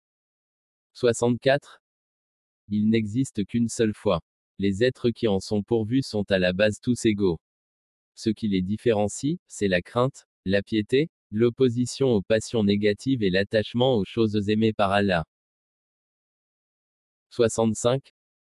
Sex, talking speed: male, 125 wpm